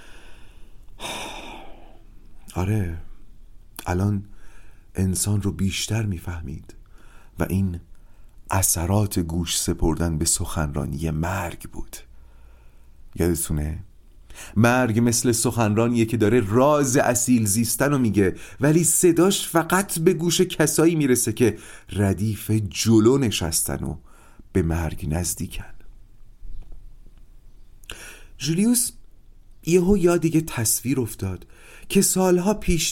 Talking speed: 90 wpm